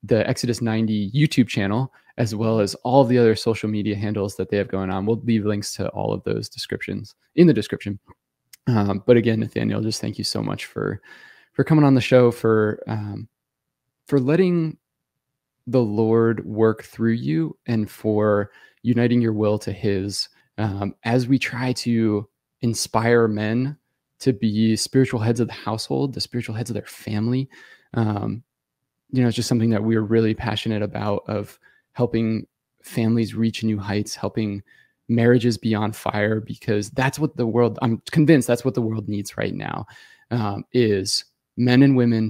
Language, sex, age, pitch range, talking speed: English, male, 20-39, 105-125 Hz, 175 wpm